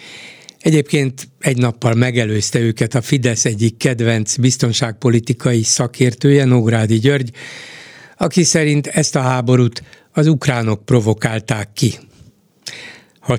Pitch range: 120-145 Hz